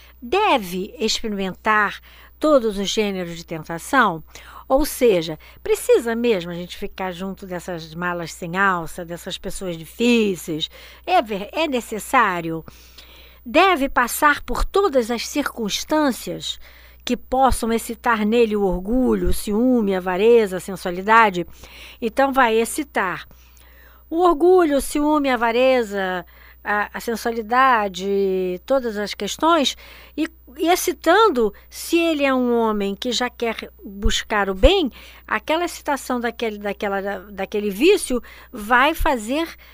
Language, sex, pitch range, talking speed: Portuguese, female, 195-270 Hz, 120 wpm